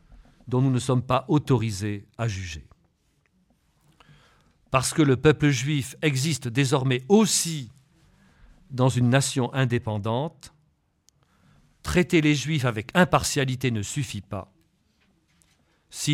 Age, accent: 50-69, French